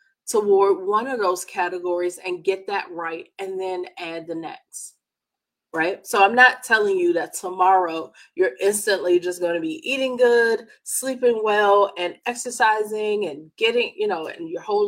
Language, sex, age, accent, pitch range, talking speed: English, female, 30-49, American, 185-270 Hz, 165 wpm